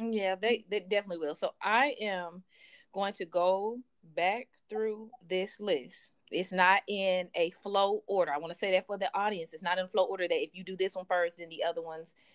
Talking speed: 225 wpm